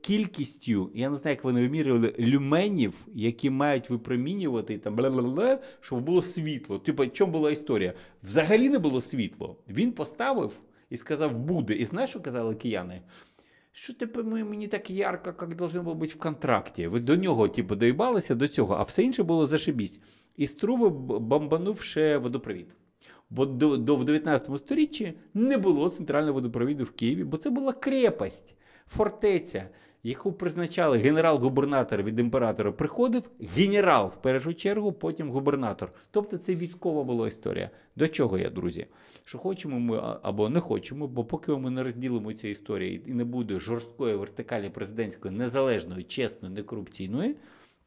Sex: male